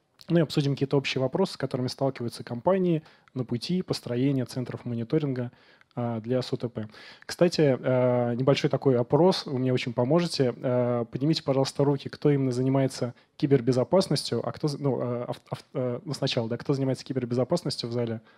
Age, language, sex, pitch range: 20-39, Russian, male, 125-145 Hz